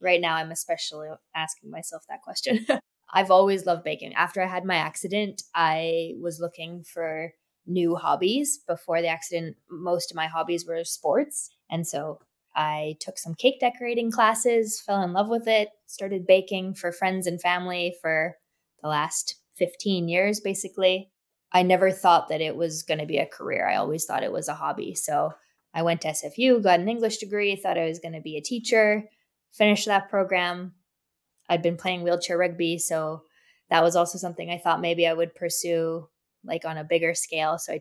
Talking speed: 185 wpm